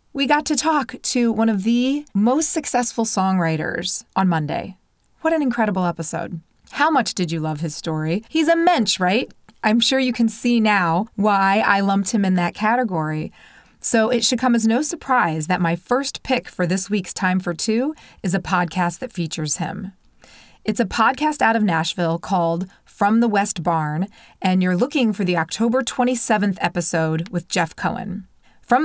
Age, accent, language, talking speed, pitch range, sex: 30-49, American, English, 180 wpm, 175-235 Hz, female